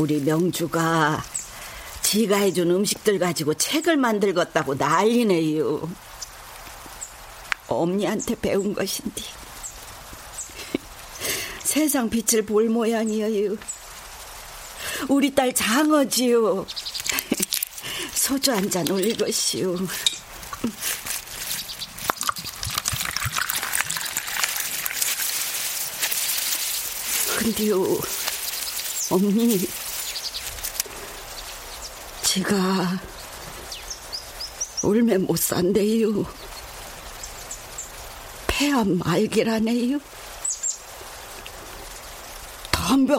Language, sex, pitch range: Korean, female, 190-270 Hz